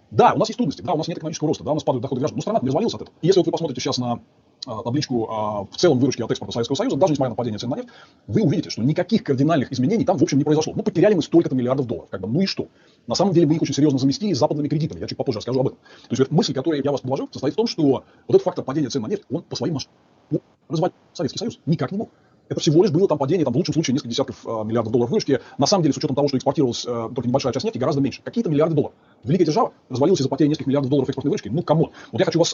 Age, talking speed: 30-49, 300 wpm